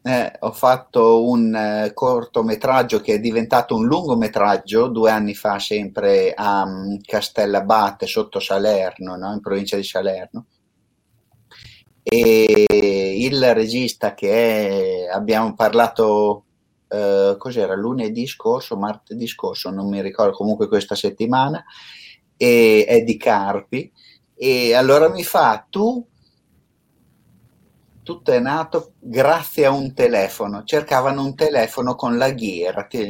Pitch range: 105-150 Hz